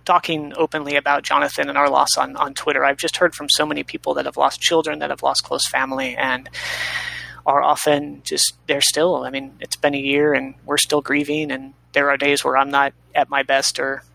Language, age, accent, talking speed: English, 30-49, American, 225 wpm